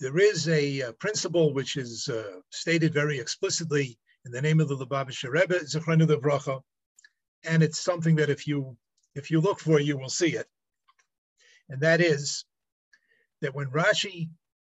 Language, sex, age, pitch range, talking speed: English, male, 50-69, 150-180 Hz, 155 wpm